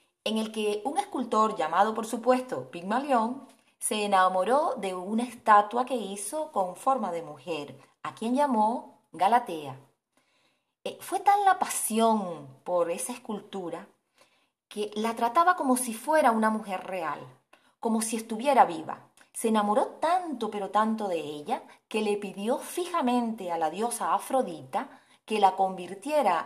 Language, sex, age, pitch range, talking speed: Spanish, female, 30-49, 195-260 Hz, 145 wpm